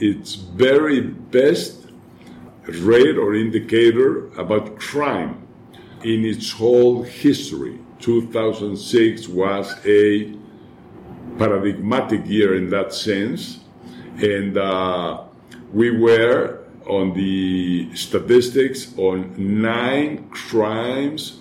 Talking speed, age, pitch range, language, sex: 85 wpm, 50-69, 100-125 Hz, English, male